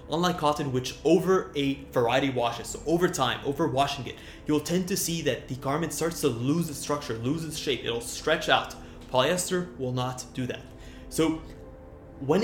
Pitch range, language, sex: 130-155 Hz, English, male